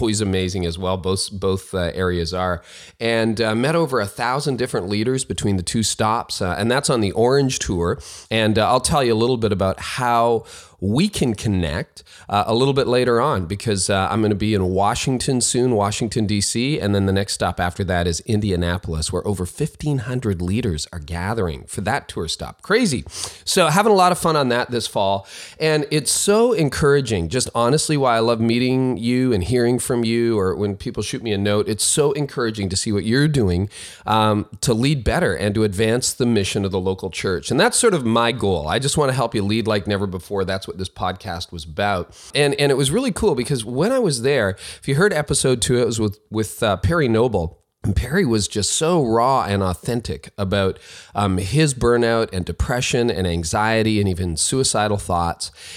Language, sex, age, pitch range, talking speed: English, male, 30-49, 95-125 Hz, 210 wpm